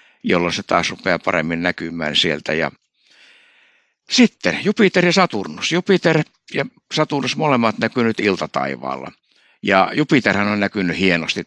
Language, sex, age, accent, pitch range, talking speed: Finnish, male, 60-79, native, 100-120 Hz, 125 wpm